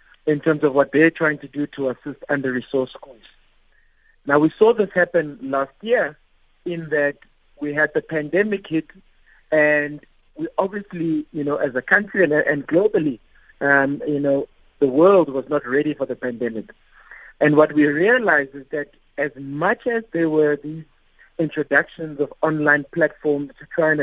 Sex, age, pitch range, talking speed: male, 50-69, 140-170 Hz, 170 wpm